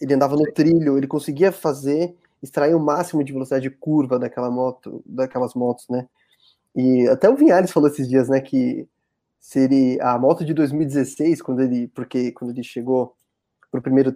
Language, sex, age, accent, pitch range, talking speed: Portuguese, male, 20-39, Brazilian, 130-165 Hz, 180 wpm